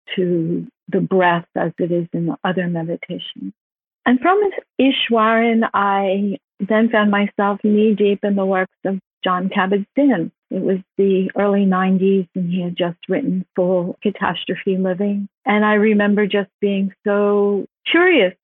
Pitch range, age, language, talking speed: 180-210 Hz, 50-69, English, 145 wpm